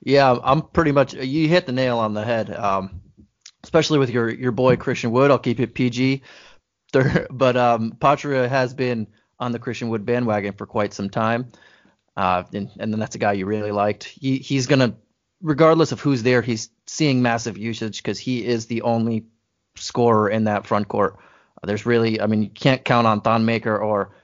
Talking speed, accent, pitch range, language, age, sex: 200 wpm, American, 110-125 Hz, English, 20-39, male